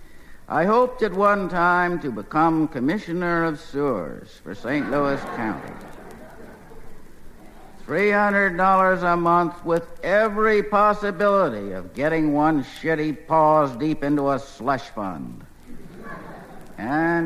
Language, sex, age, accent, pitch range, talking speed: English, male, 60-79, American, 145-180 Hz, 110 wpm